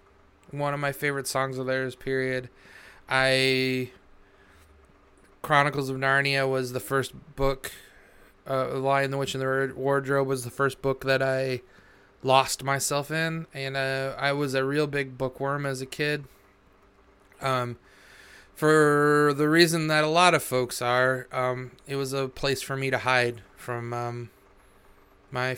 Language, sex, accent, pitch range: English, male, American, 120-140 Hz